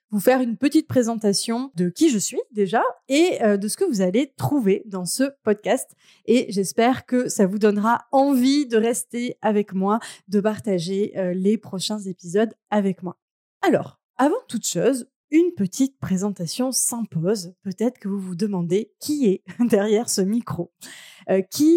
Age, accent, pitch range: 20-39, French, 195-250 Hz